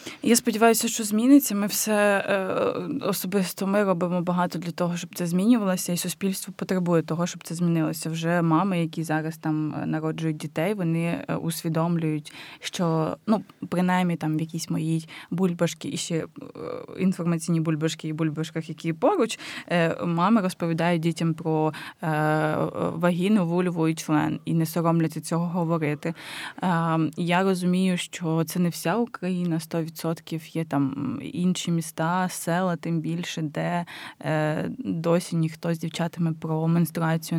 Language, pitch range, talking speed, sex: Ukrainian, 160-185 Hz, 135 wpm, female